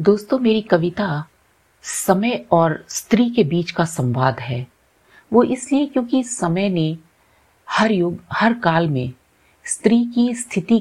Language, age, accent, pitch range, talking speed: Hindi, 50-69, native, 140-215 Hz, 135 wpm